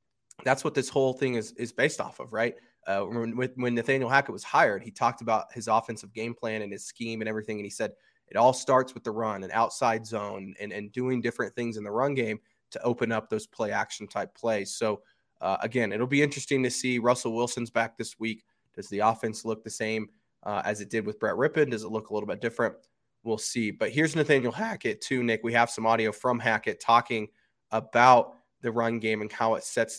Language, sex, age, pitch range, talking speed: English, male, 20-39, 110-120 Hz, 230 wpm